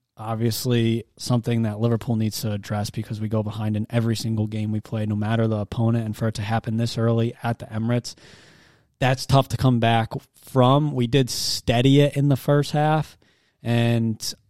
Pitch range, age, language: 110-125 Hz, 20-39, English